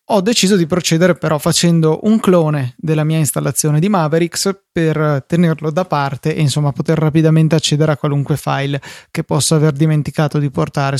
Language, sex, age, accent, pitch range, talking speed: Italian, male, 20-39, native, 145-170 Hz, 170 wpm